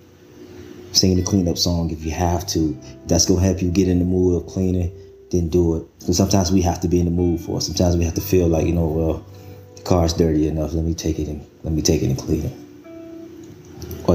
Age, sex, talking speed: 20-39, male, 255 wpm